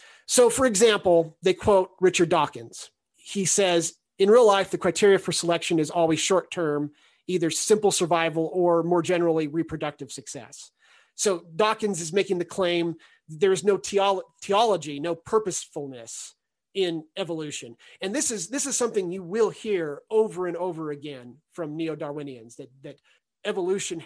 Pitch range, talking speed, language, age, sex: 155-200 Hz, 145 wpm, English, 30-49, male